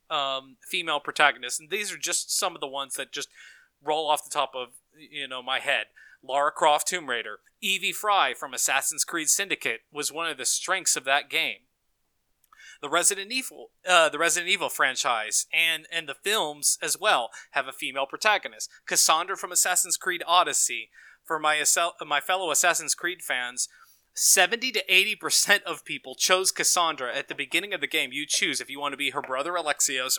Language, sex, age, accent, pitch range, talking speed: English, male, 30-49, American, 140-180 Hz, 185 wpm